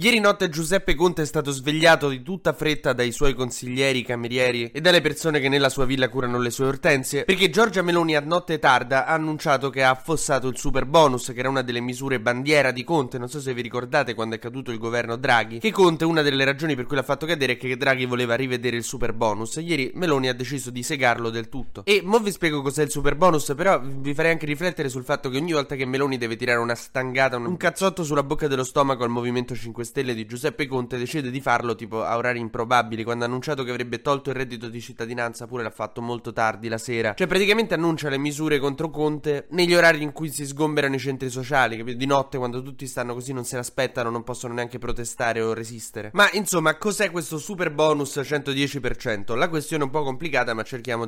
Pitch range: 120-155 Hz